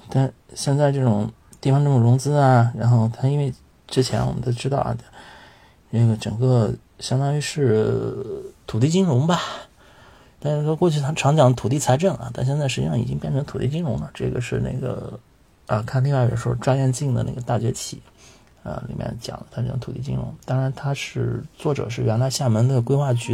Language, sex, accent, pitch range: Chinese, male, native, 120-145 Hz